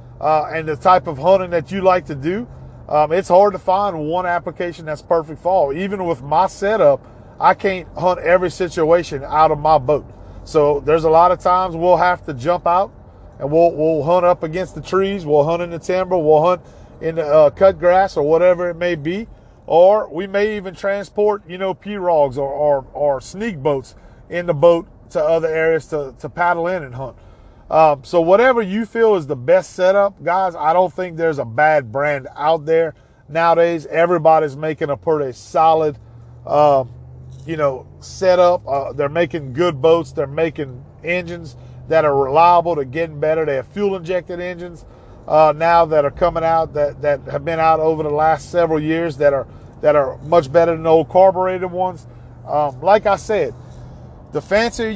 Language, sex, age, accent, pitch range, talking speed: English, male, 40-59, American, 145-180 Hz, 190 wpm